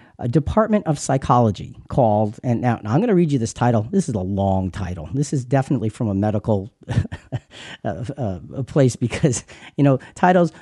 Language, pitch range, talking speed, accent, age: English, 115-160 Hz, 175 wpm, American, 50-69